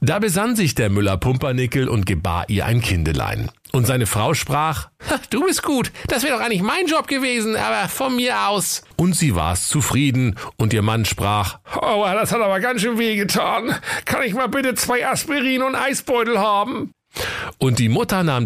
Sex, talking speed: male, 190 wpm